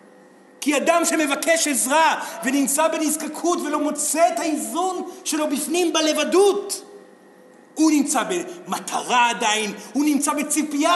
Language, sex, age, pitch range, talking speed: Hebrew, male, 50-69, 265-330 Hz, 110 wpm